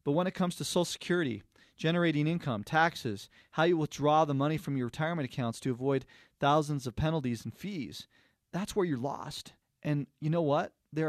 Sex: male